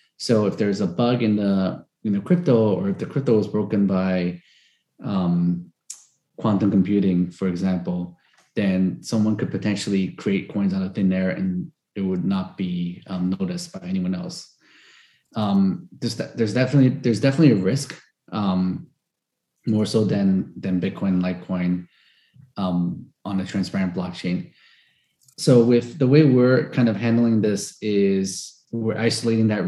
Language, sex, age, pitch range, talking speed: English, male, 30-49, 95-120 Hz, 150 wpm